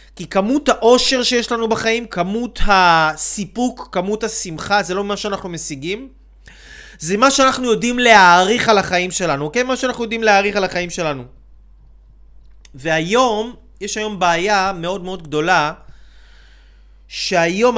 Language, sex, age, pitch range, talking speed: Hebrew, male, 20-39, 155-230 Hz, 130 wpm